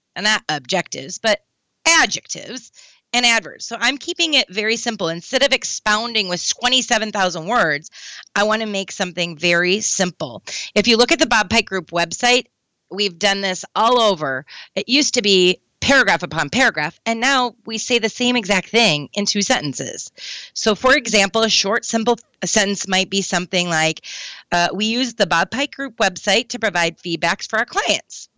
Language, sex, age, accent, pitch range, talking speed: English, female, 30-49, American, 190-250 Hz, 175 wpm